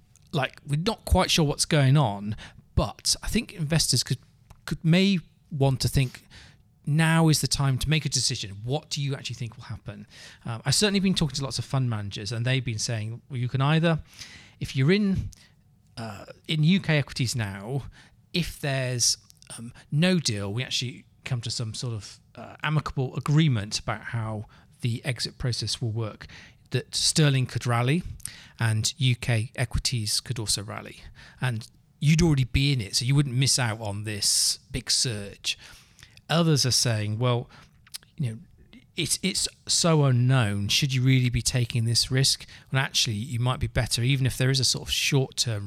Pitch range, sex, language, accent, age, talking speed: 115-145 Hz, male, English, British, 40-59, 180 wpm